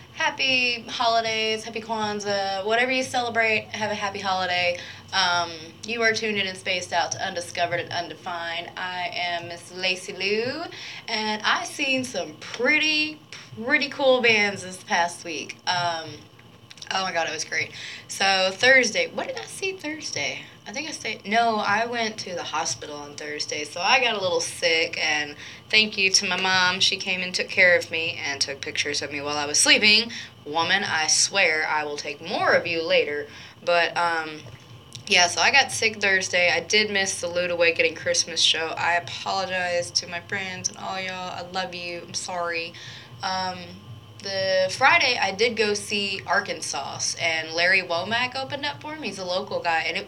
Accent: American